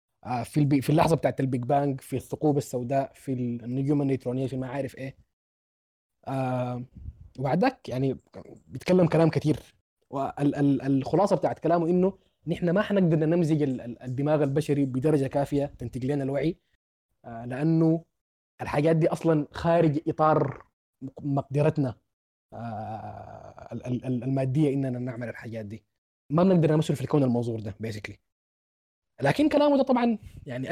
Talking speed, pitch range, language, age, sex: 115 wpm, 120-155 Hz, Arabic, 20-39, male